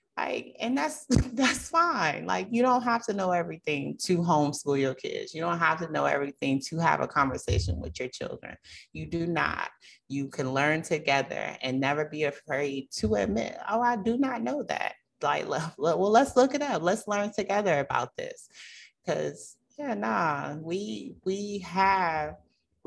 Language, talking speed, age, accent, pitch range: English, 170 wpm, 30-49, American, 145-195 Hz